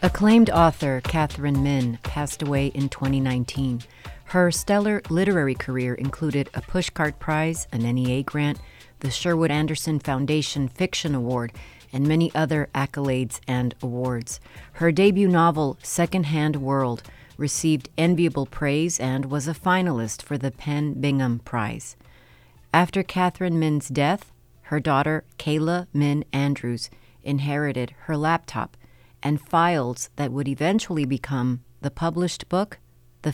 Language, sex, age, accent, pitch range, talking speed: English, female, 40-59, American, 130-165 Hz, 125 wpm